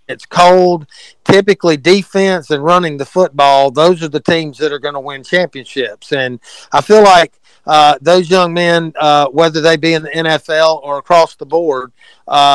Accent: American